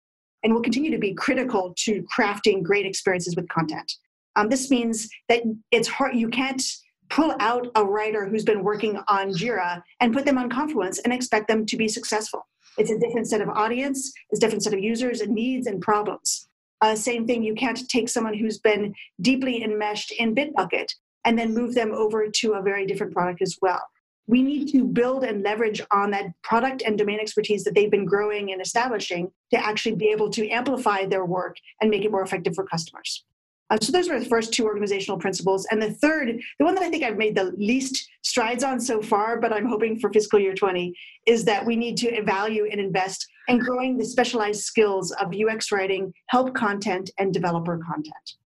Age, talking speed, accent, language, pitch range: 40-59, 205 wpm, American, English, 200-240 Hz